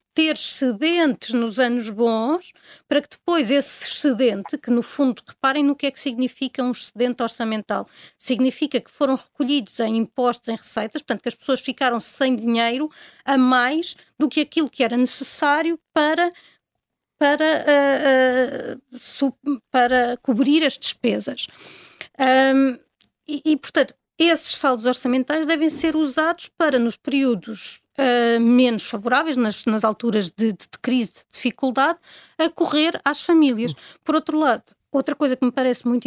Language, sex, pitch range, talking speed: Portuguese, female, 245-295 Hz, 145 wpm